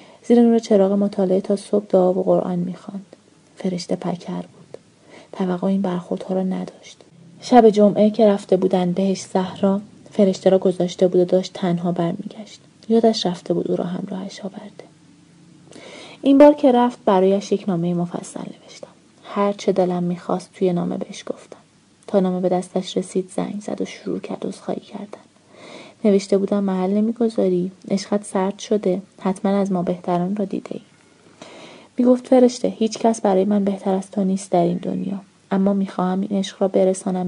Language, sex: Persian, female